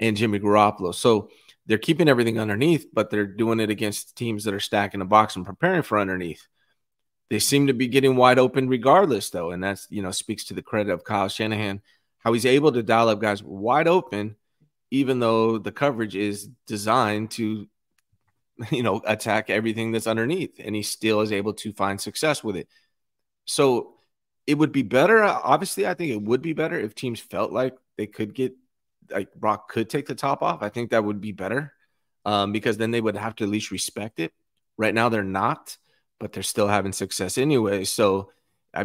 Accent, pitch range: American, 100-125 Hz